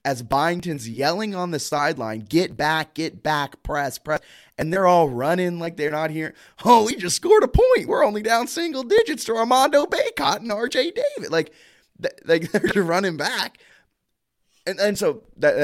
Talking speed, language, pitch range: 175 wpm, English, 120-175 Hz